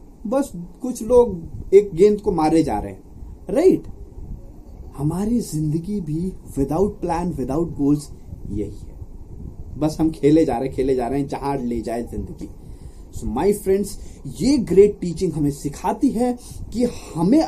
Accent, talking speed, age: native, 155 wpm, 30-49